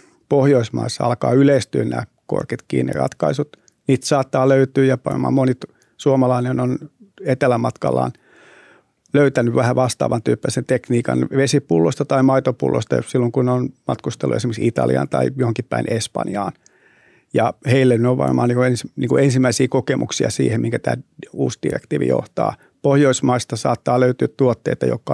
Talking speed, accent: 125 wpm, native